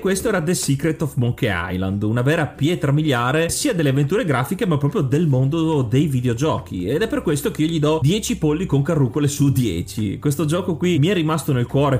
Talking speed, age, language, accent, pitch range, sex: 215 wpm, 30-49, Italian, native, 125-160 Hz, male